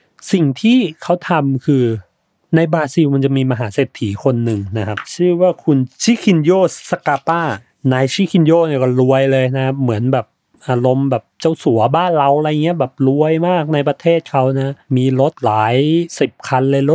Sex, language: male, Thai